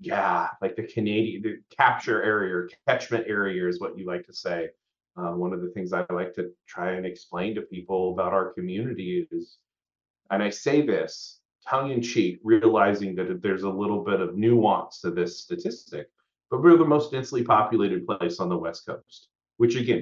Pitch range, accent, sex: 90-135 Hz, American, male